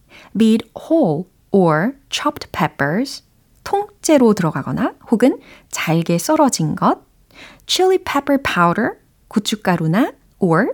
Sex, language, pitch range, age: female, Korean, 180-260 Hz, 30-49